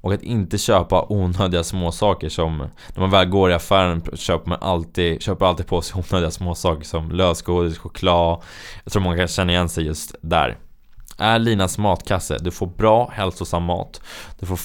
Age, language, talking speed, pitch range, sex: 20-39, Swedish, 185 wpm, 85-105 Hz, male